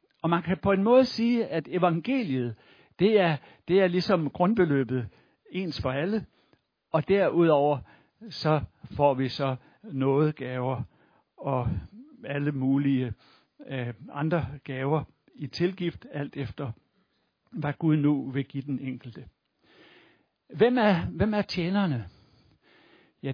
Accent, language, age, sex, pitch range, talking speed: native, Danish, 60-79, male, 140-195 Hz, 125 wpm